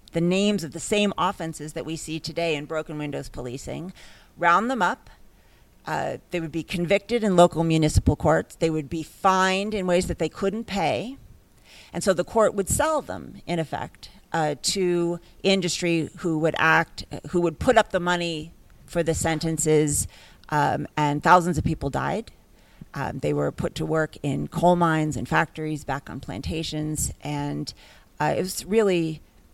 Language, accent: English, American